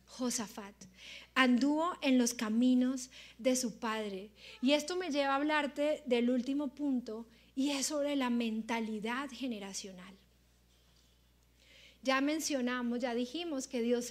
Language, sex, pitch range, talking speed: Spanish, female, 215-265 Hz, 125 wpm